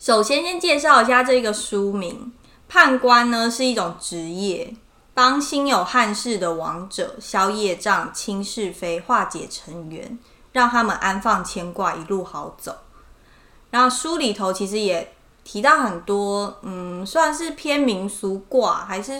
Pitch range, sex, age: 190-250 Hz, female, 20-39